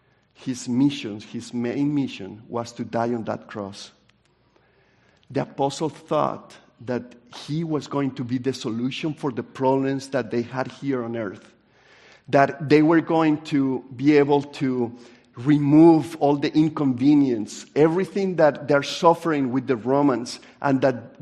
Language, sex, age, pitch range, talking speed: English, male, 50-69, 130-175 Hz, 145 wpm